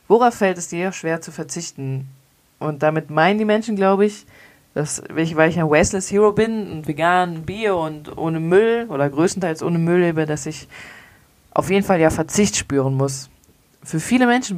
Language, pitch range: German, 155-195 Hz